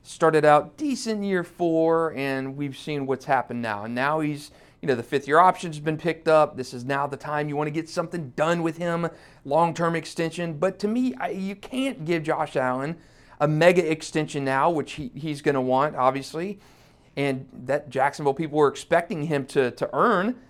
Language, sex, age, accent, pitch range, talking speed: English, male, 40-59, American, 135-170 Hz, 195 wpm